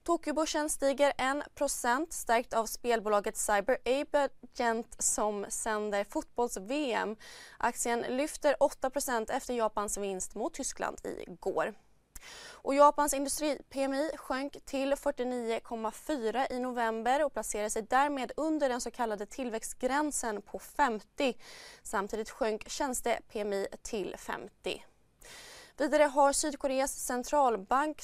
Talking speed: 105 wpm